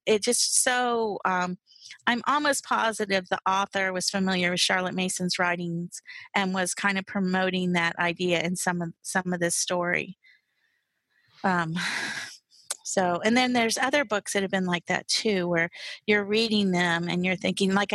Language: English